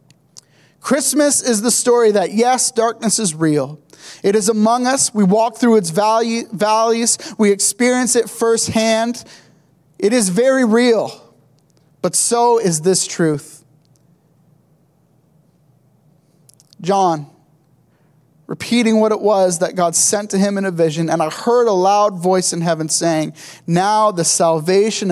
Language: English